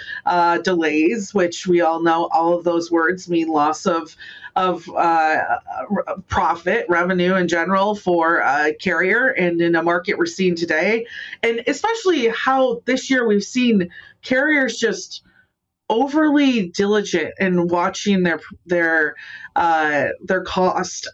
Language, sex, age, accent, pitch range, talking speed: English, female, 30-49, American, 170-215 Hz, 135 wpm